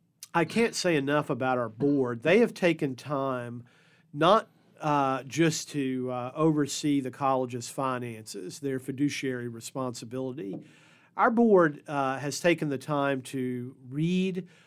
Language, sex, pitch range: English, male, 130-155 Hz